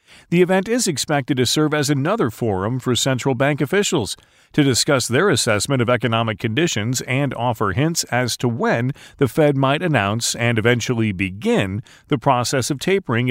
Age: 40-59